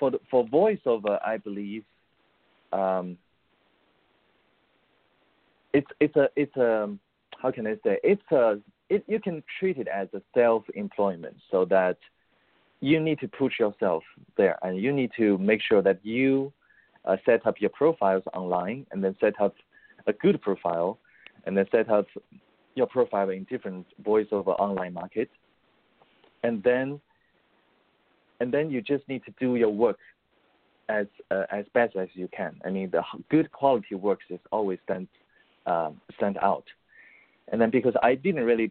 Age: 40-59